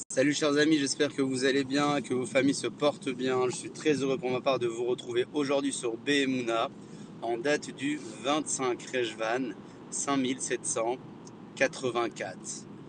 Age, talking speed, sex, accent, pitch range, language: 30-49, 155 wpm, male, French, 125-180 Hz, French